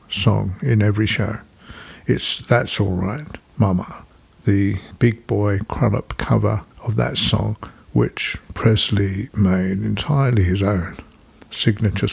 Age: 60-79